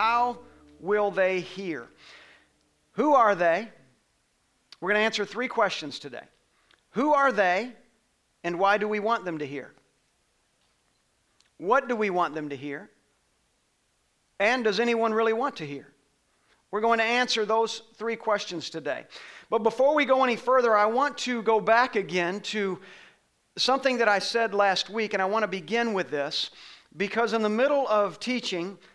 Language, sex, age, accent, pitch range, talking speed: English, male, 40-59, American, 175-230 Hz, 165 wpm